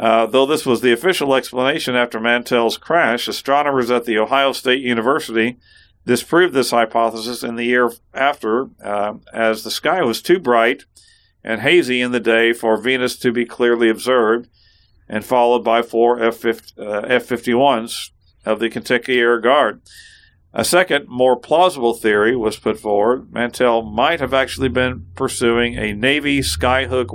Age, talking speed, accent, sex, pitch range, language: 50-69, 150 wpm, American, male, 110-130 Hz, English